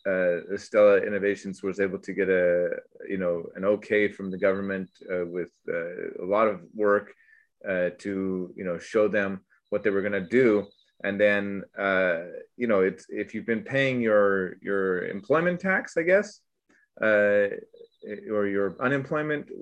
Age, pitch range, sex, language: 30-49, 95-135 Hz, male, Japanese